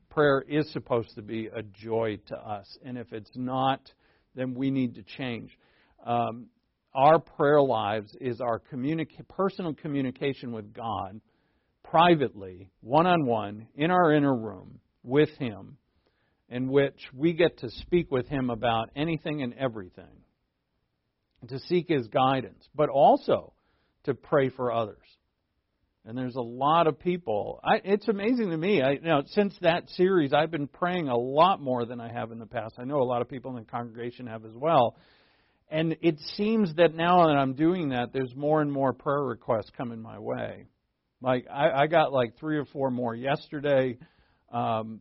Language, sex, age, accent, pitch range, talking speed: English, male, 50-69, American, 115-150 Hz, 170 wpm